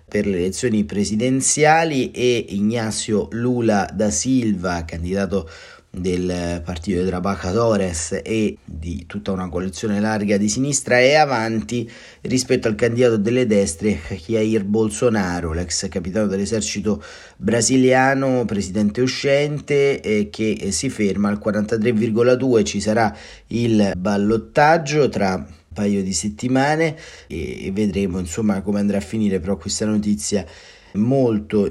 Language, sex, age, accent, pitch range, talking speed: Italian, male, 30-49, native, 95-115 Hz, 120 wpm